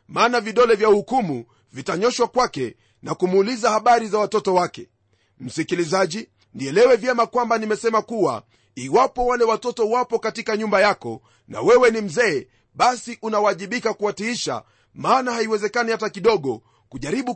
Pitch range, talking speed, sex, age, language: 180-230 Hz, 130 wpm, male, 40-59, Swahili